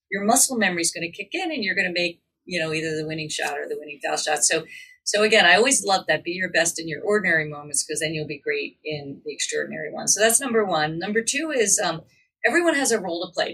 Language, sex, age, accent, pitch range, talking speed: English, female, 40-59, American, 160-230 Hz, 270 wpm